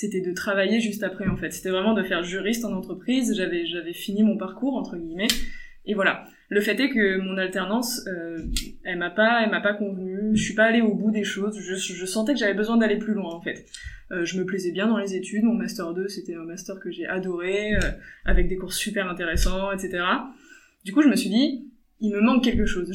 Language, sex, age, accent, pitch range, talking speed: French, female, 20-39, French, 190-235 Hz, 235 wpm